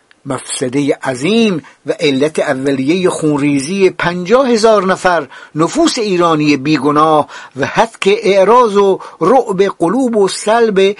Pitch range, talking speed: 165-230 Hz, 115 wpm